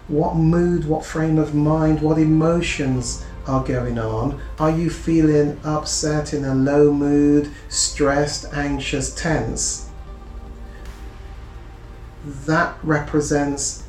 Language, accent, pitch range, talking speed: English, British, 120-160 Hz, 105 wpm